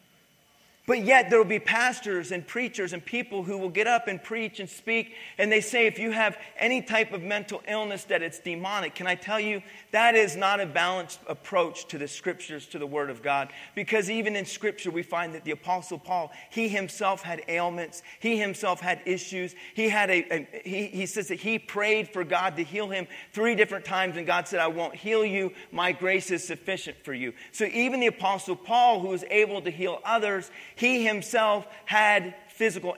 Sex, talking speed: male, 205 wpm